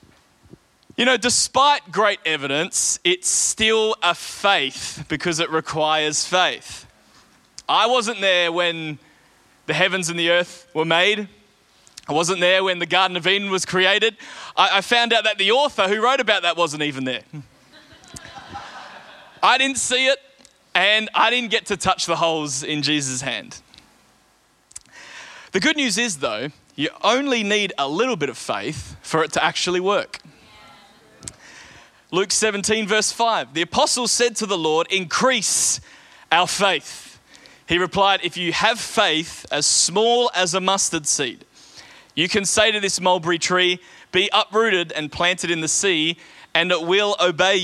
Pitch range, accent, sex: 170-220 Hz, Australian, male